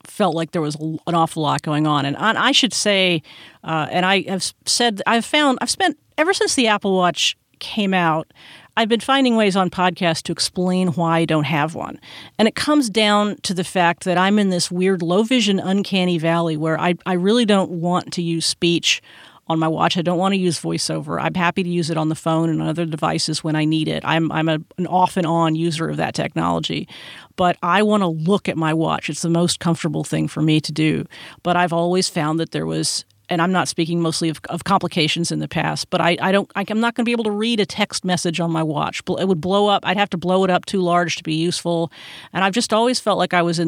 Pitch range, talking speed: 165-195 Hz, 240 wpm